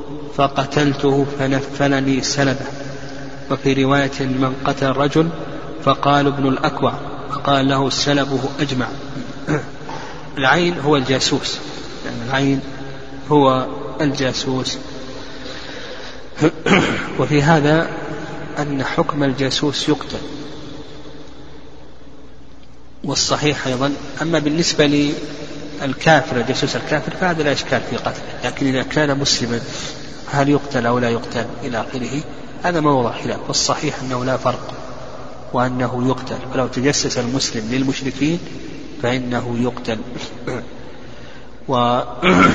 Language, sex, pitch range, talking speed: Arabic, male, 130-145 Hz, 95 wpm